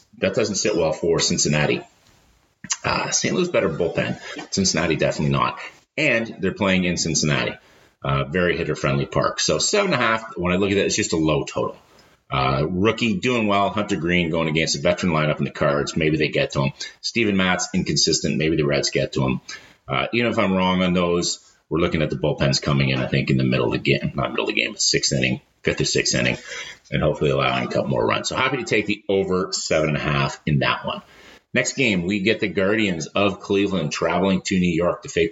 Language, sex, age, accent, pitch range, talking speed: English, male, 30-49, American, 75-100 Hz, 230 wpm